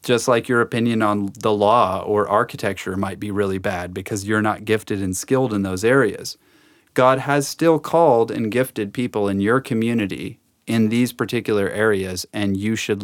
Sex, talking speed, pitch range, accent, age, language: male, 180 wpm, 100-125 Hz, American, 30-49, English